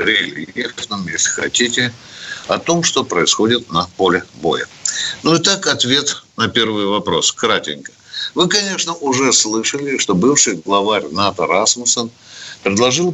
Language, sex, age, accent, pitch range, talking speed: Russian, male, 60-79, native, 110-150 Hz, 130 wpm